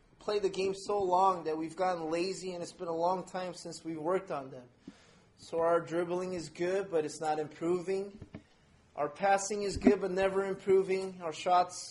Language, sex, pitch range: English, male, 165-200 Hz